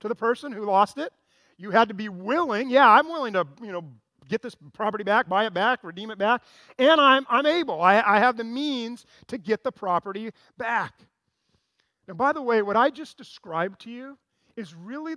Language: English